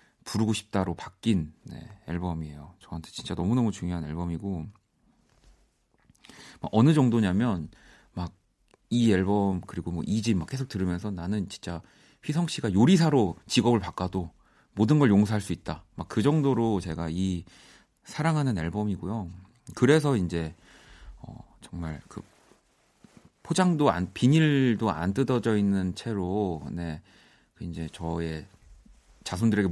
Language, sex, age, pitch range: Korean, male, 40-59, 90-125 Hz